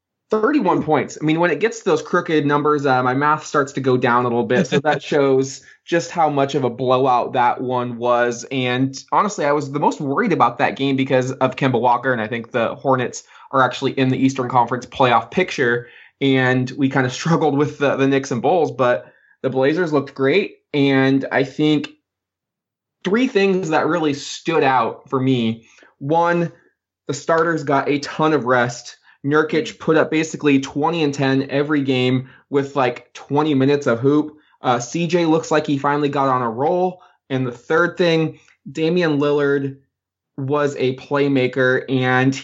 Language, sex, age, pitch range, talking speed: English, male, 20-39, 130-155 Hz, 185 wpm